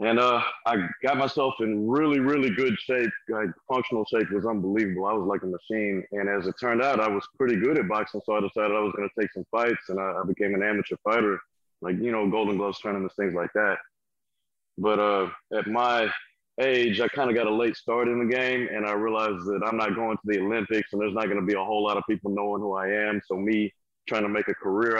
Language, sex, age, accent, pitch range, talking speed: English, male, 30-49, American, 100-120 Hz, 245 wpm